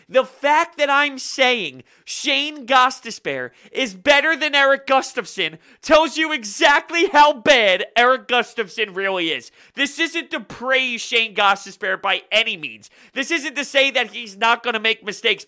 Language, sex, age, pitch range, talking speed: English, male, 30-49, 195-285 Hz, 160 wpm